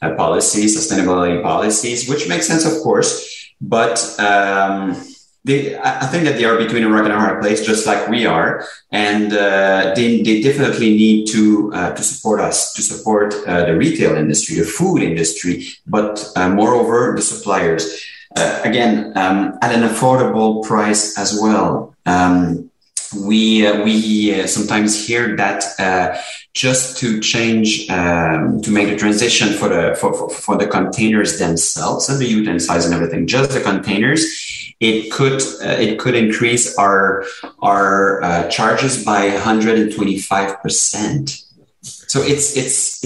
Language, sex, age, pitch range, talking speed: English, male, 30-49, 100-120 Hz, 155 wpm